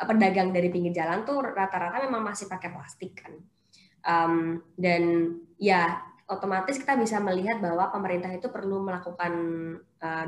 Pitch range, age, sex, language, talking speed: 175-225 Hz, 20-39, female, Indonesian, 140 wpm